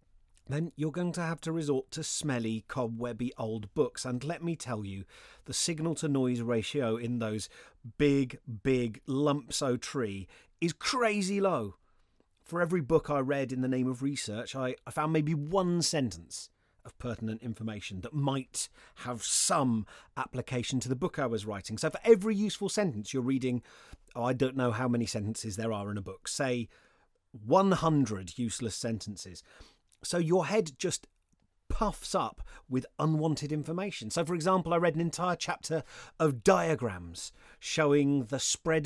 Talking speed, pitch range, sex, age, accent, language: 160 wpm, 120-160 Hz, male, 30-49, British, English